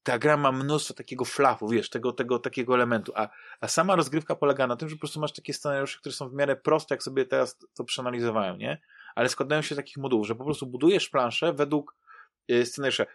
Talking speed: 220 wpm